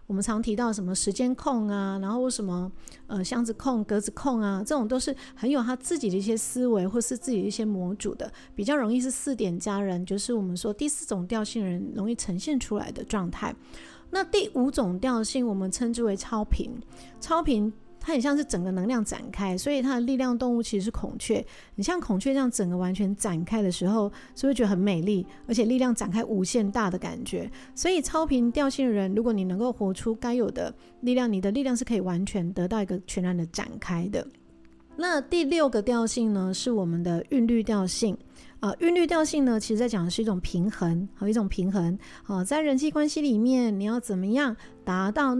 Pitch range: 200-260 Hz